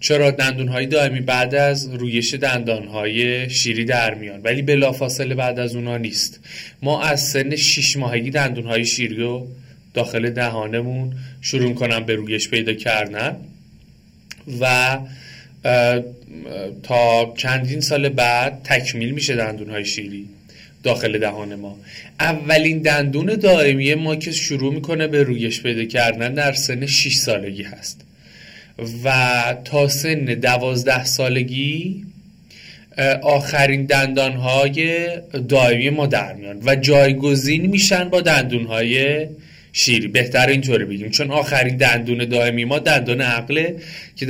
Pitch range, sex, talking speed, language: 120-145 Hz, male, 120 wpm, Persian